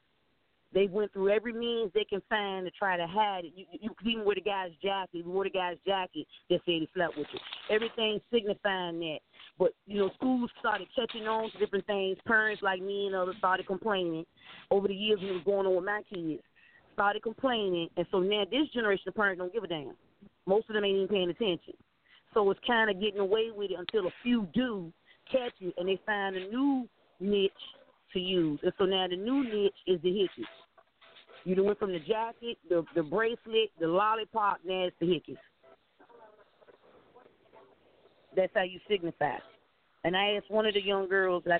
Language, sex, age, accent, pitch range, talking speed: English, female, 30-49, American, 185-220 Hz, 200 wpm